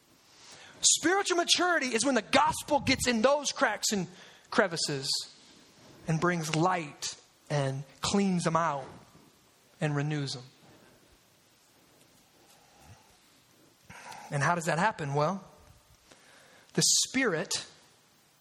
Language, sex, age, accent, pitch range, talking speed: English, male, 30-49, American, 215-295 Hz, 100 wpm